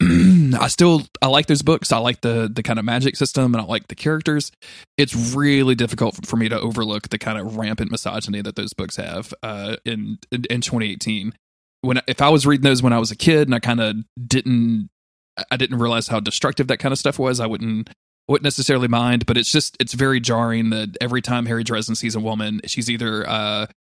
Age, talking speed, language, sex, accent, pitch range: 20-39, 220 wpm, English, male, American, 110-130 Hz